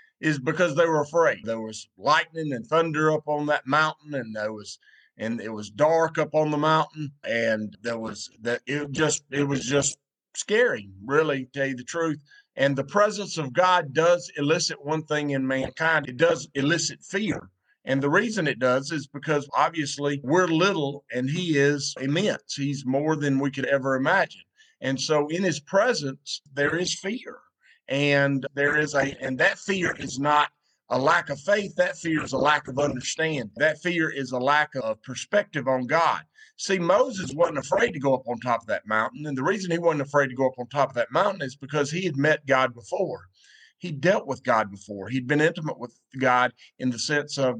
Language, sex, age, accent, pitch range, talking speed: English, male, 50-69, American, 135-160 Hz, 205 wpm